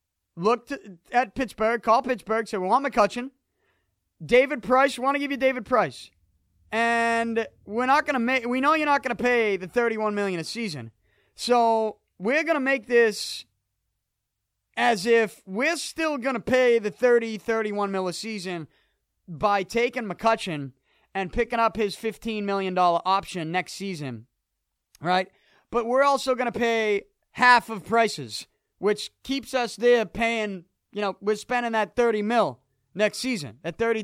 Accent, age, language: American, 30-49, English